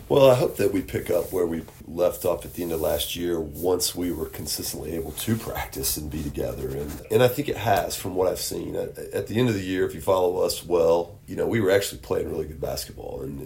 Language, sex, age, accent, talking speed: English, male, 40-59, American, 265 wpm